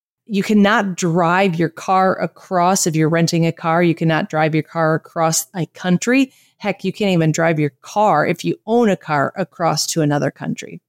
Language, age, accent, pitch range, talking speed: English, 40-59, American, 160-215 Hz, 195 wpm